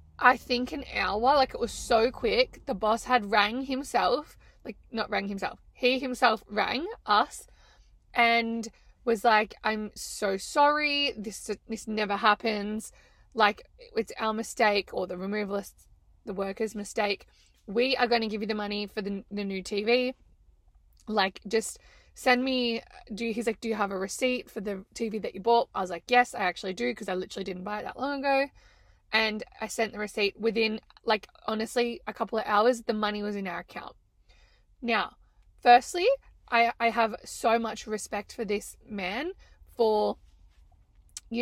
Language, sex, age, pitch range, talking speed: English, female, 20-39, 205-245 Hz, 175 wpm